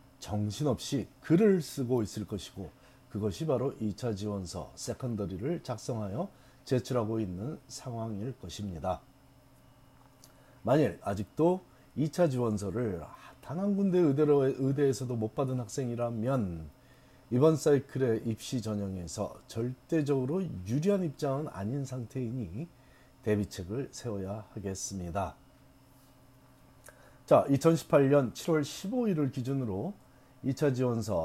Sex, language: male, Korean